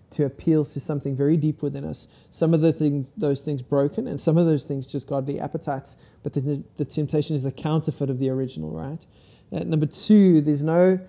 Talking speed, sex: 210 wpm, male